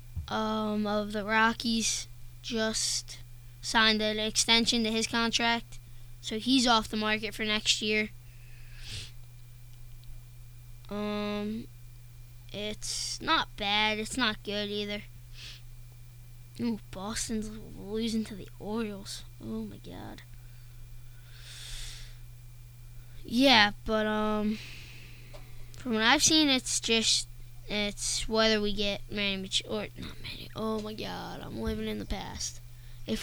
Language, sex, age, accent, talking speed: English, female, 10-29, American, 110 wpm